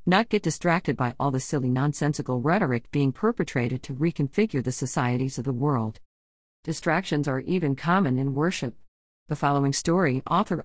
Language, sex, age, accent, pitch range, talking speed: English, female, 50-69, American, 135-190 Hz, 160 wpm